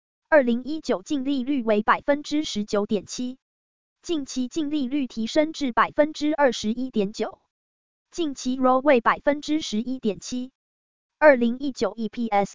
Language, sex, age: Chinese, female, 20-39